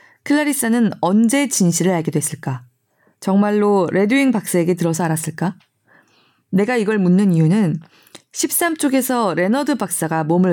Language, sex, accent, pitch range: Korean, female, native, 170-225 Hz